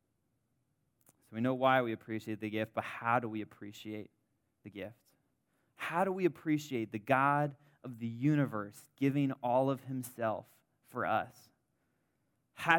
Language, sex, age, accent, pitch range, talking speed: English, male, 20-39, American, 115-135 Hz, 140 wpm